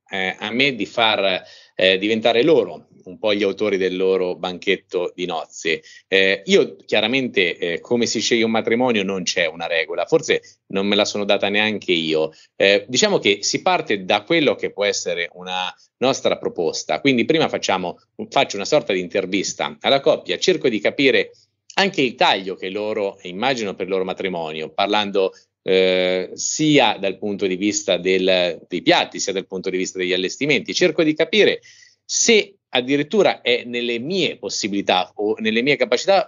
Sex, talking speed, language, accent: male, 170 wpm, Italian, native